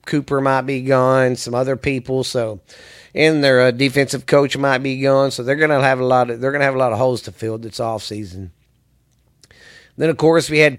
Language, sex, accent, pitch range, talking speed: English, male, American, 125-150 Hz, 220 wpm